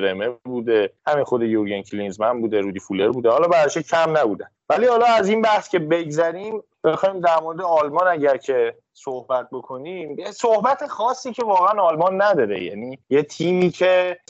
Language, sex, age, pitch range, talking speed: Persian, male, 30-49, 135-185 Hz, 165 wpm